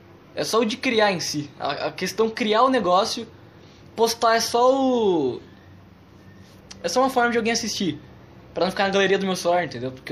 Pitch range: 145-210 Hz